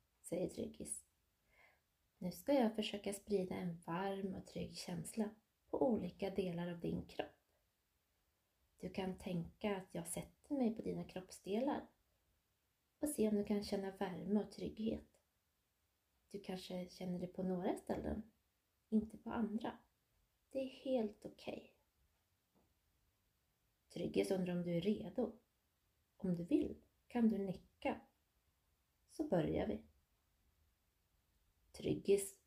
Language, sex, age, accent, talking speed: Swedish, female, 20-39, native, 125 wpm